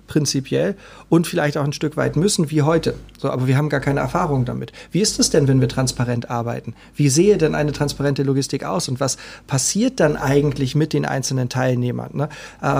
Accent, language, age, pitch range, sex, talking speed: German, German, 40-59, 130-150 Hz, male, 205 wpm